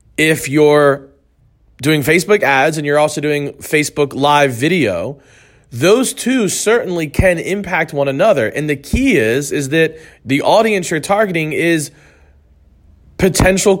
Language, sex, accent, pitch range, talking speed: English, male, American, 135-170 Hz, 135 wpm